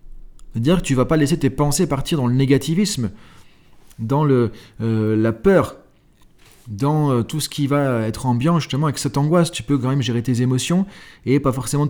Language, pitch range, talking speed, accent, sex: French, 115-150 Hz, 195 wpm, French, male